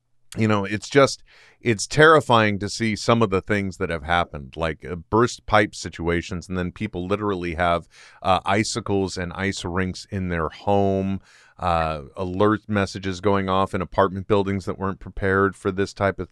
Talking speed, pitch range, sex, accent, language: 175 wpm, 95-120 Hz, male, American, English